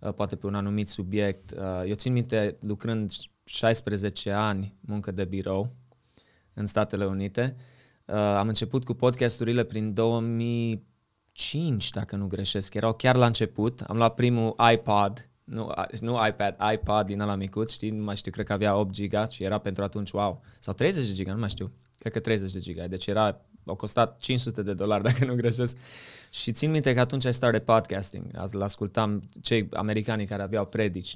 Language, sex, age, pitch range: Romanian, male, 20-39, 100-115 Hz